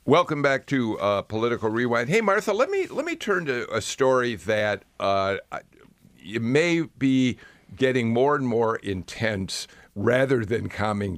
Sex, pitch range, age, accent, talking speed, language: male, 100-135 Hz, 50-69, American, 150 wpm, English